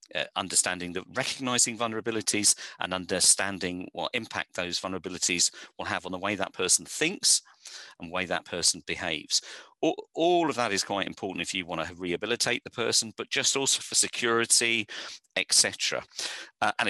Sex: male